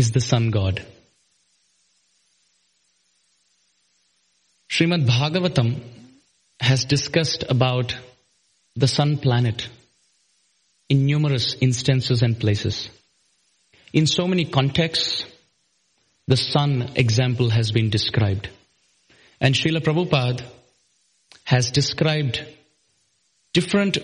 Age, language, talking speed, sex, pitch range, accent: 30-49, English, 80 wpm, male, 115-135 Hz, Indian